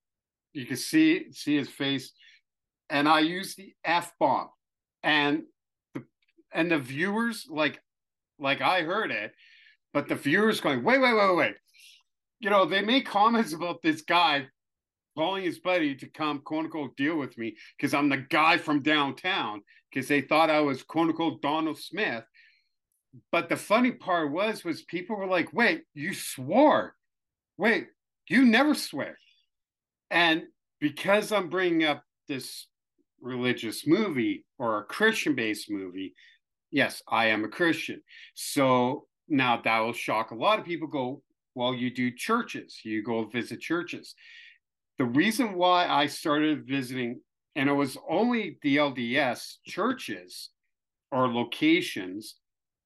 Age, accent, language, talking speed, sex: 50-69, American, English, 145 wpm, male